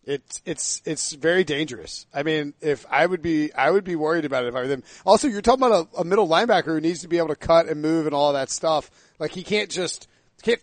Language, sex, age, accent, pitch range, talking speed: English, male, 40-59, American, 160-220 Hz, 265 wpm